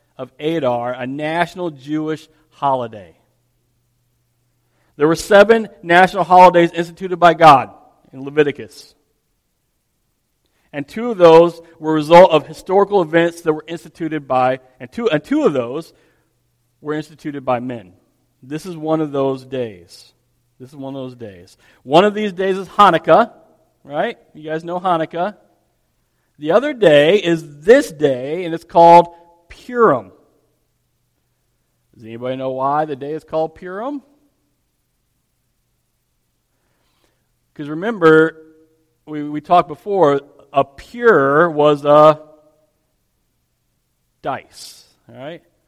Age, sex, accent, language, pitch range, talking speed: 40-59, male, American, English, 135-175 Hz, 120 wpm